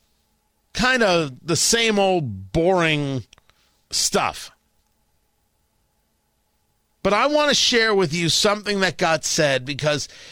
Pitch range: 135-205 Hz